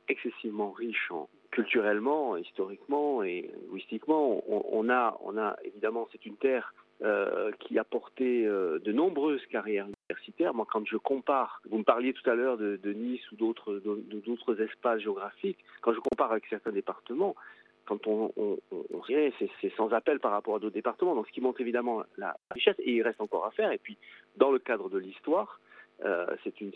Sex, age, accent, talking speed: male, 40-59, French, 200 wpm